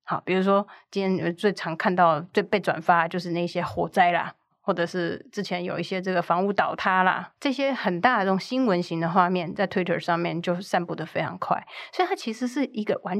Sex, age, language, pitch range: female, 30-49, Chinese, 180-215 Hz